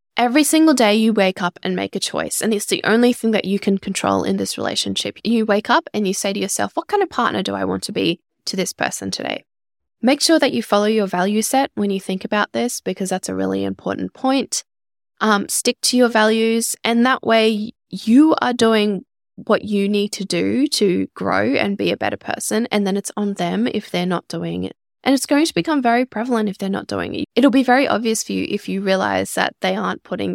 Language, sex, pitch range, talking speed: English, female, 195-250 Hz, 235 wpm